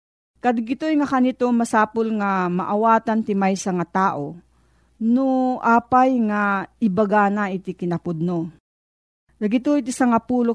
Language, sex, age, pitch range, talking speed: Filipino, female, 40-59, 180-245 Hz, 110 wpm